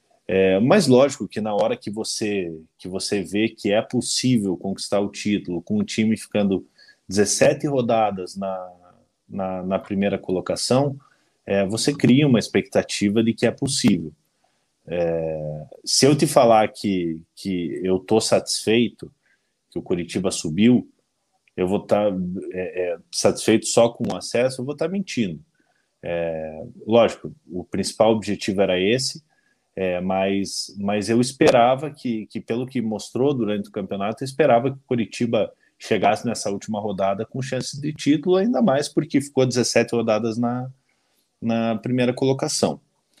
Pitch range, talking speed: 100-130 Hz, 140 wpm